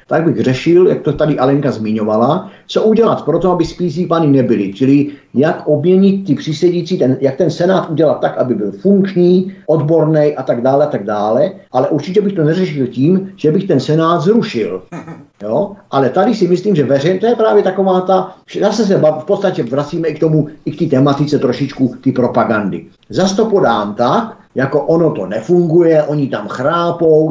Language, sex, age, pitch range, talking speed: Czech, male, 50-69, 130-185 Hz, 190 wpm